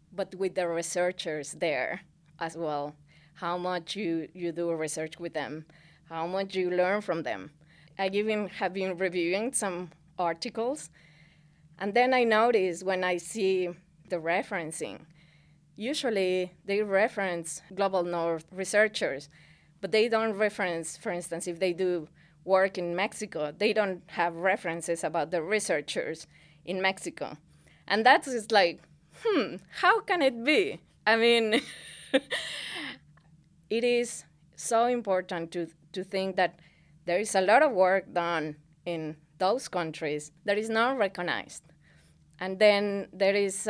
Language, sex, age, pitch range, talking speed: English, female, 20-39, 165-200 Hz, 140 wpm